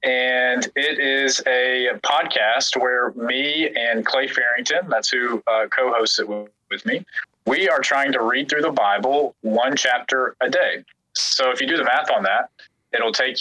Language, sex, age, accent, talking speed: English, male, 30-49, American, 175 wpm